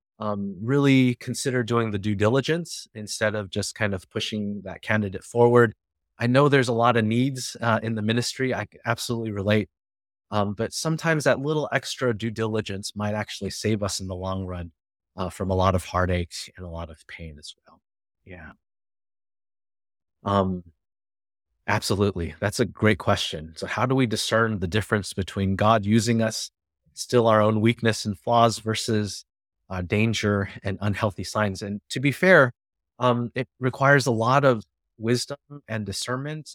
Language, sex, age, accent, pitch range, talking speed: English, male, 30-49, American, 100-120 Hz, 165 wpm